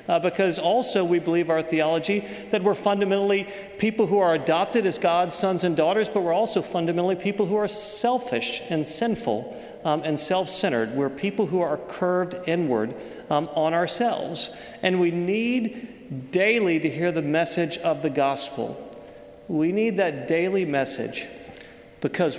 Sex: male